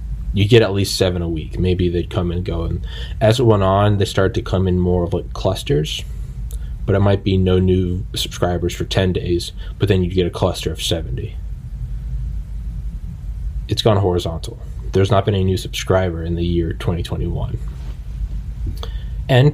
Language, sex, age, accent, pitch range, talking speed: English, male, 20-39, American, 90-110 Hz, 180 wpm